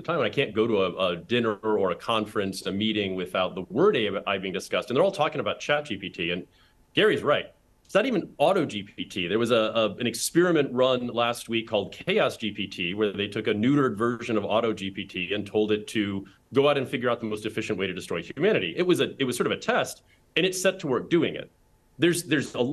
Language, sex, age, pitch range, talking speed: English, male, 30-49, 105-140 Hz, 245 wpm